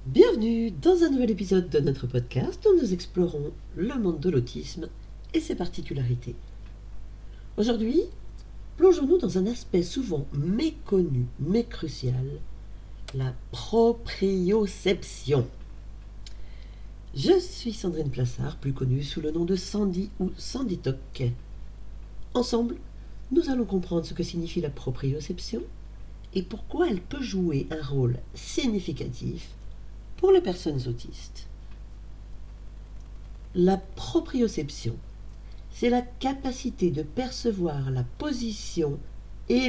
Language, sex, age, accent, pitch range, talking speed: French, female, 40-59, French, 115-195 Hz, 110 wpm